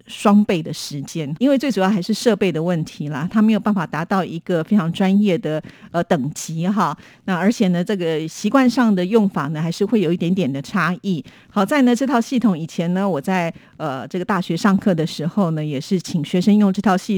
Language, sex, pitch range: Chinese, female, 170-210 Hz